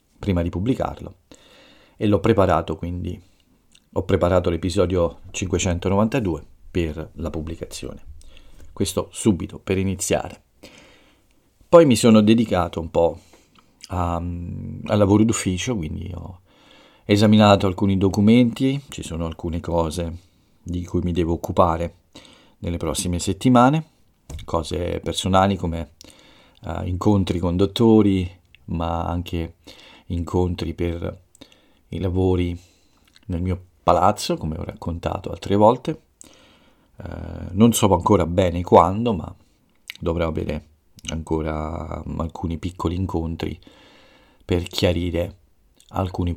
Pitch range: 85-100 Hz